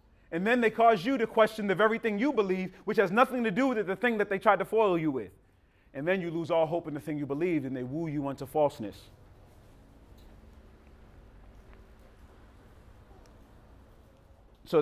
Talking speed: 185 wpm